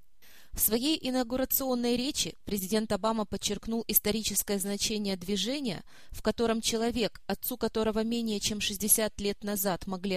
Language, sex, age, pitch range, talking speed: Russian, female, 20-39, 195-235 Hz, 125 wpm